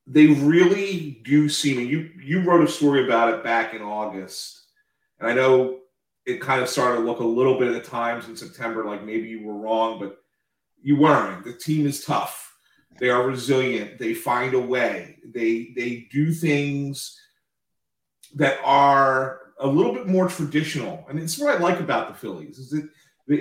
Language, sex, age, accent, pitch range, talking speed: English, male, 40-59, American, 130-170 Hz, 190 wpm